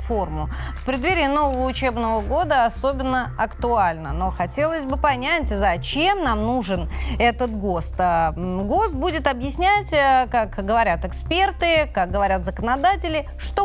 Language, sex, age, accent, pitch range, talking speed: Russian, female, 30-49, native, 220-295 Hz, 120 wpm